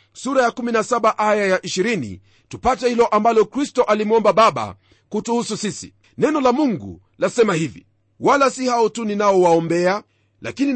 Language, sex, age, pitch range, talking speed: Swahili, male, 40-59, 170-235 Hz, 145 wpm